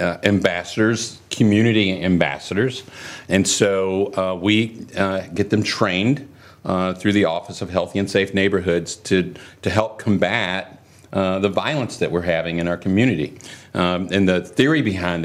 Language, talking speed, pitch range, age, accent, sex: English, 155 wpm, 100-130 Hz, 50-69, American, male